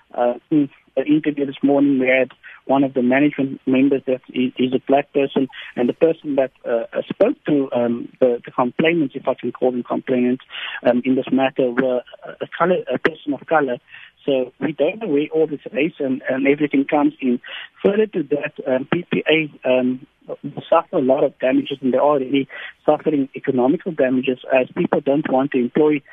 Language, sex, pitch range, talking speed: English, male, 130-150 Hz, 195 wpm